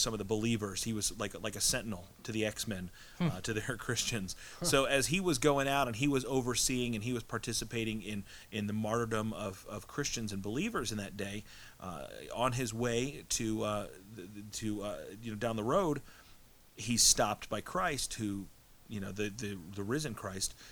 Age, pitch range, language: 30-49, 100-125 Hz, English